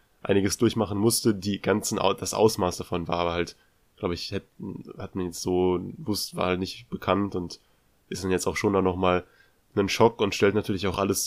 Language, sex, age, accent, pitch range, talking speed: German, male, 20-39, German, 90-100 Hz, 200 wpm